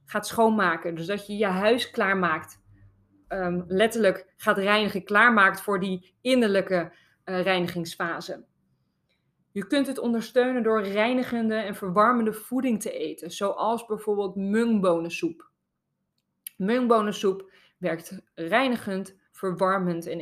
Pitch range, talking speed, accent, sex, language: 180-220 Hz, 105 wpm, Dutch, female, Dutch